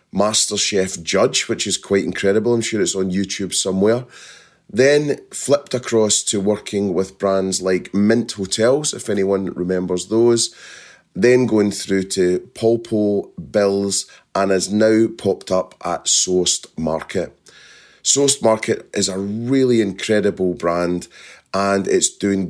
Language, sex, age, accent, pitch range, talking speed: English, male, 30-49, British, 95-110 Hz, 135 wpm